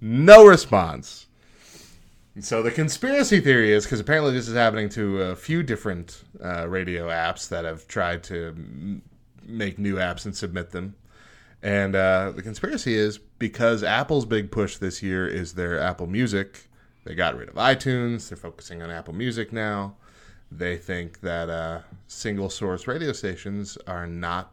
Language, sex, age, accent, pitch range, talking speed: English, male, 30-49, American, 95-115 Hz, 160 wpm